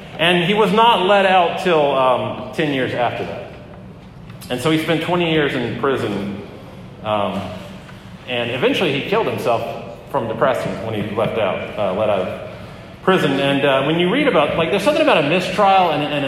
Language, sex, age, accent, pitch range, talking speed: English, male, 30-49, American, 140-180 Hz, 190 wpm